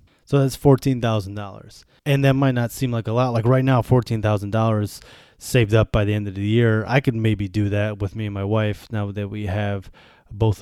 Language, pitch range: English, 105-125 Hz